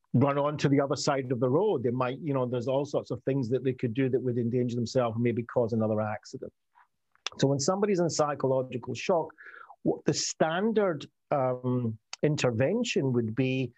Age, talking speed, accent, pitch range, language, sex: 40-59, 185 wpm, British, 115-140 Hz, English, male